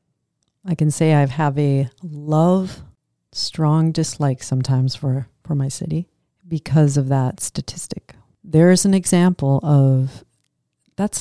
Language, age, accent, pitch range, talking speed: English, 40-59, American, 140-170 Hz, 130 wpm